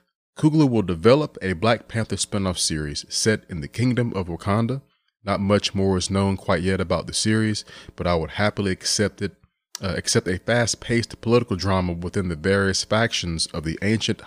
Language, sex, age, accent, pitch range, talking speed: English, male, 30-49, American, 90-105 Hz, 185 wpm